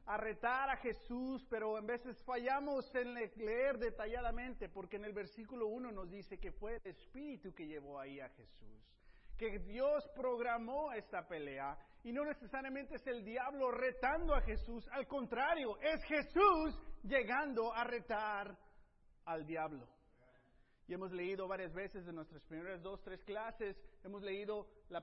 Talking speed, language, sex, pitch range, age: 155 wpm, Spanish, male, 170-240 Hz, 40-59